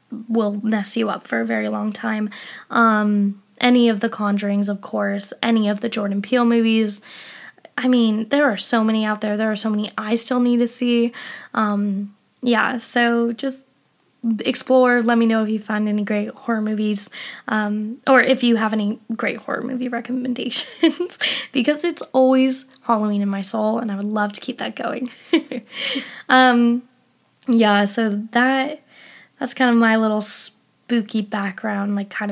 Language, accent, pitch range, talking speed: English, American, 215-250 Hz, 170 wpm